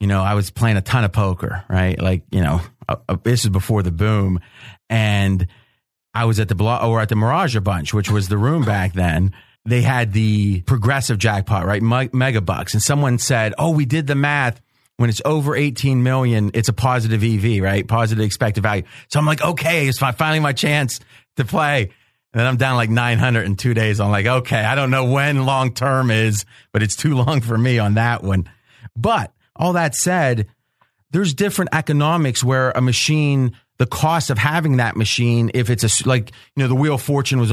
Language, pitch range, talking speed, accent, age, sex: English, 110-135 Hz, 205 wpm, American, 30-49, male